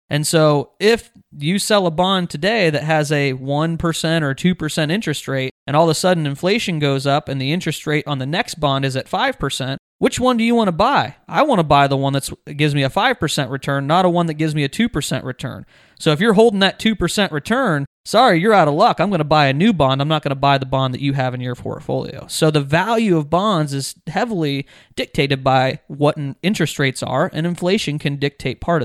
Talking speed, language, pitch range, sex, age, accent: 235 wpm, English, 135-165 Hz, male, 30-49, American